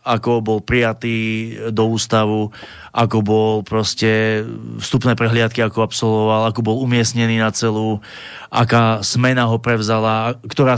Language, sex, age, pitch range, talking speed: Slovak, male, 30-49, 110-125 Hz, 125 wpm